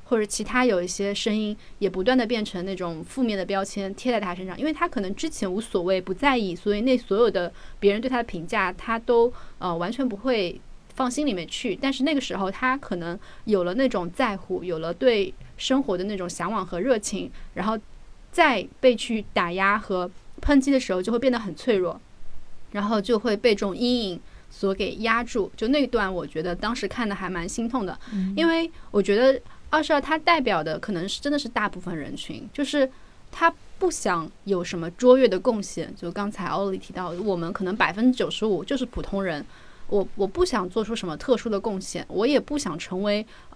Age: 30-49